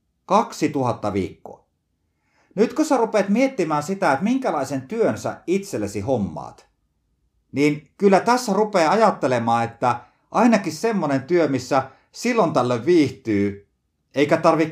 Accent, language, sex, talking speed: native, Finnish, male, 115 wpm